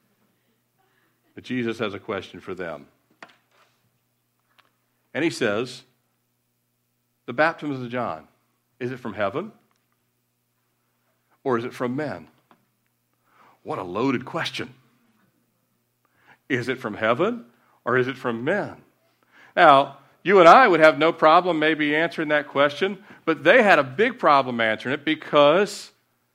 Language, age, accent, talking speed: English, 50-69, American, 130 wpm